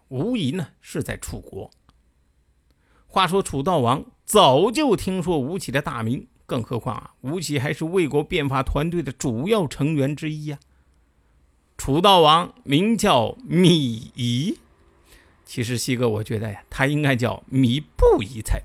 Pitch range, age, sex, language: 110-160 Hz, 50-69, male, Chinese